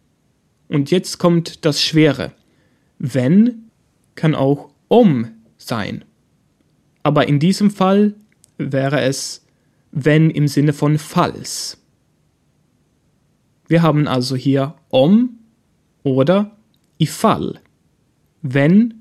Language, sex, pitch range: German, male, 135-185 Hz